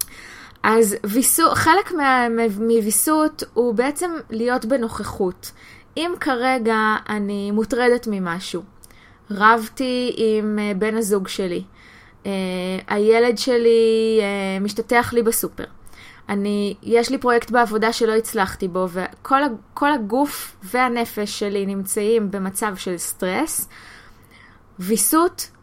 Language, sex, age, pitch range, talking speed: Hebrew, female, 20-39, 205-245 Hz, 95 wpm